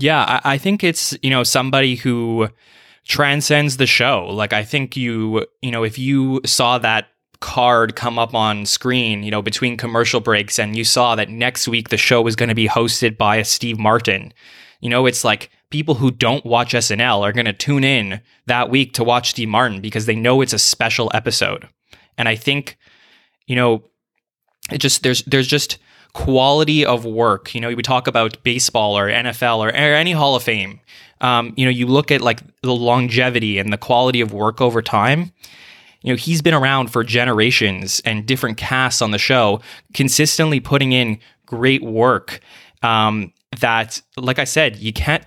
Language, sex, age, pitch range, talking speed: English, male, 20-39, 115-140 Hz, 190 wpm